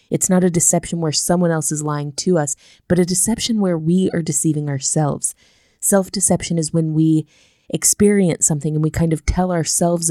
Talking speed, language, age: 185 wpm, English, 20-39